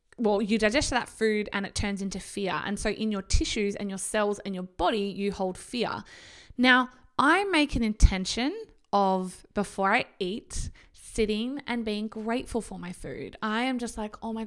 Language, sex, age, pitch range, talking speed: English, female, 20-39, 200-265 Hz, 190 wpm